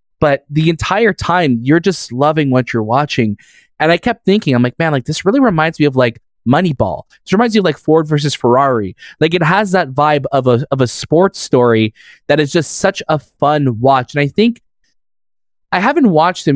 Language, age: English, 20-39